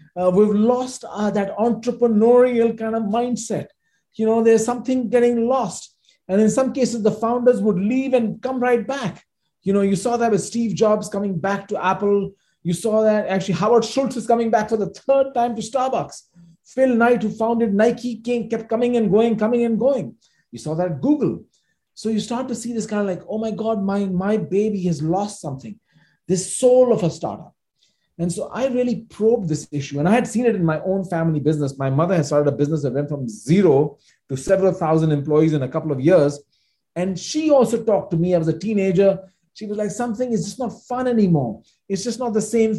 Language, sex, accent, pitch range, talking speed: English, male, Indian, 160-230 Hz, 215 wpm